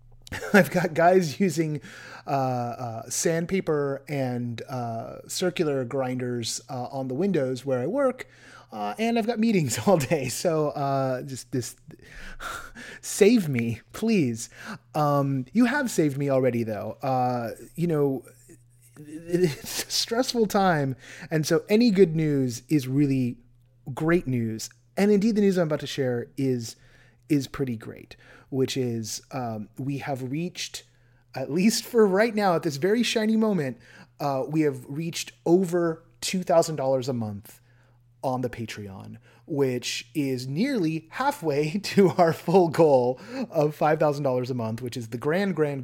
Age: 30-49